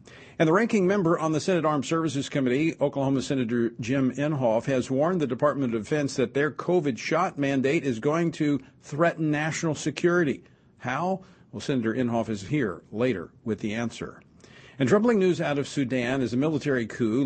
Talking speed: 175 wpm